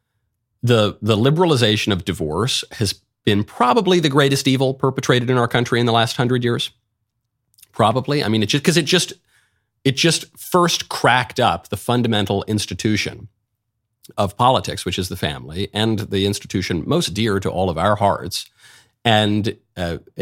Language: English